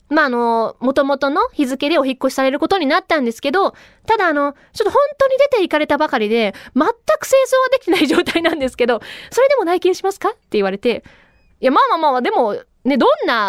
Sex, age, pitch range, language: female, 20-39, 245-395 Hz, Japanese